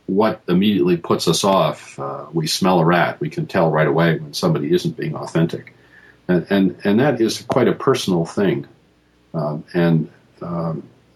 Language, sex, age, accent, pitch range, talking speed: English, male, 50-69, American, 70-95 Hz, 170 wpm